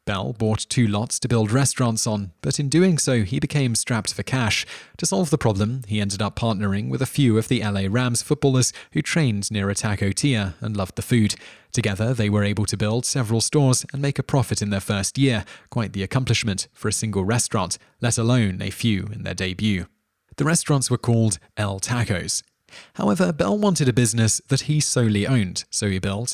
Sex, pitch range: male, 100-125 Hz